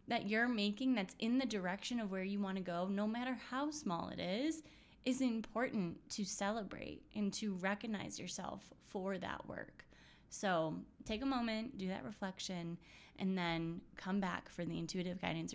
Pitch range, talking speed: 170-205 Hz, 175 wpm